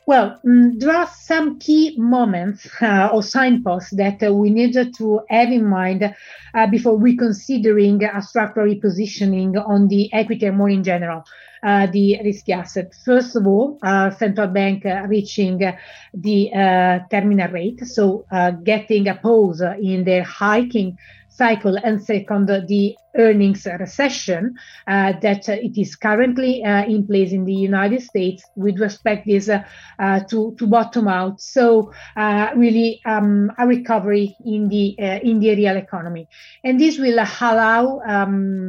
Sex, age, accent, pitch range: female, 30-49, Italian, 200-230 Hz